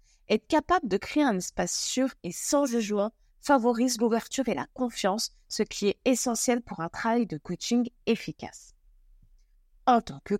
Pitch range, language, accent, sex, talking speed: 180-265 Hz, French, French, female, 160 wpm